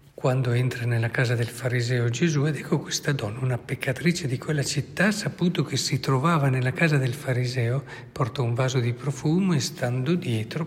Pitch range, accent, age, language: 125-165 Hz, native, 60-79, Italian